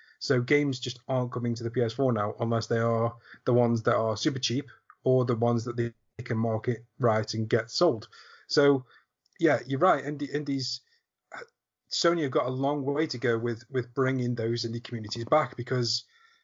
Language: English